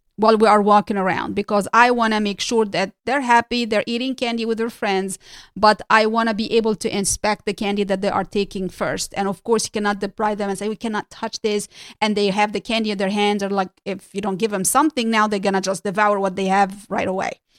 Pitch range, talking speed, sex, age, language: 200-230 Hz, 255 wpm, female, 30-49, English